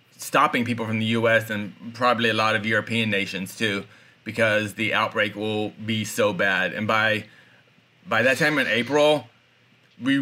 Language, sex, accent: English, male, American